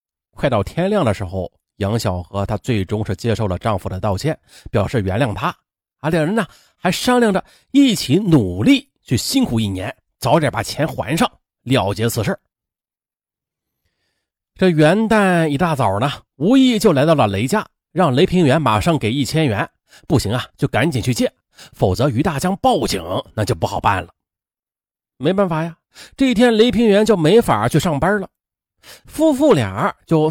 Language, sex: Chinese, male